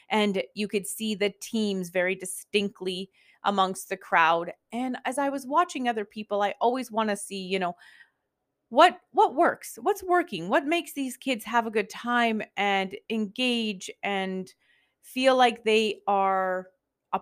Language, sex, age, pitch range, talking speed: English, female, 30-49, 195-255 Hz, 160 wpm